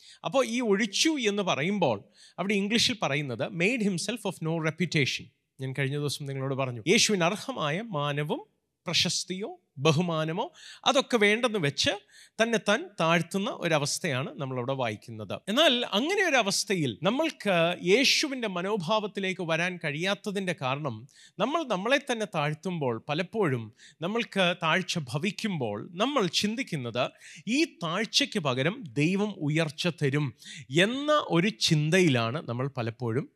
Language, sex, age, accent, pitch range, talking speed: Malayalam, male, 30-49, native, 145-215 Hz, 110 wpm